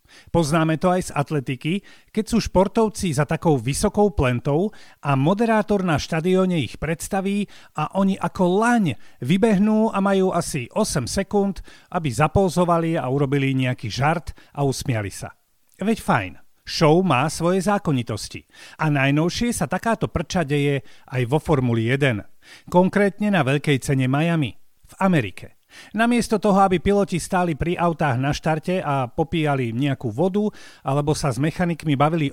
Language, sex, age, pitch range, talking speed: Slovak, male, 40-59, 140-195 Hz, 145 wpm